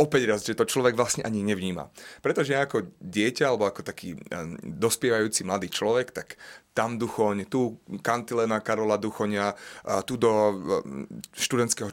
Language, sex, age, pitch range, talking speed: Slovak, male, 30-49, 105-120 Hz, 135 wpm